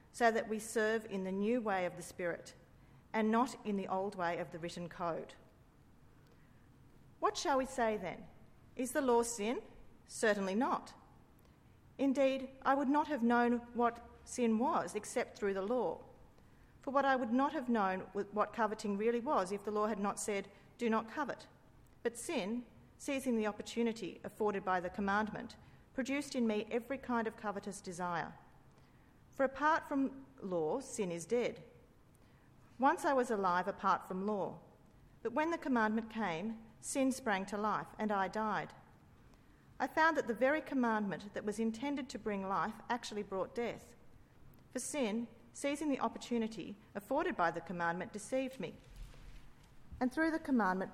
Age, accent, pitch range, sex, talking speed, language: 40-59, Australian, 200-255 Hz, female, 165 wpm, English